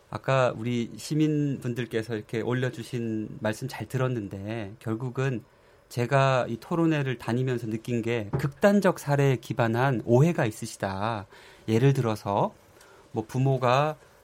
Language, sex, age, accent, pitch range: Korean, male, 30-49, native, 115-155 Hz